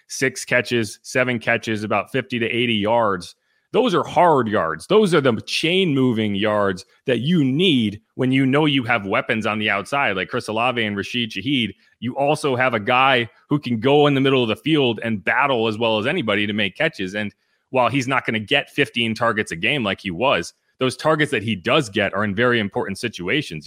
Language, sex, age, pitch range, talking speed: English, male, 30-49, 110-140 Hz, 215 wpm